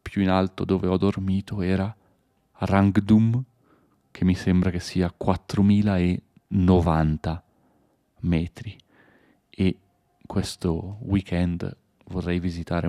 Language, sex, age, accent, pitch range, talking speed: Italian, male, 30-49, native, 85-100 Hz, 100 wpm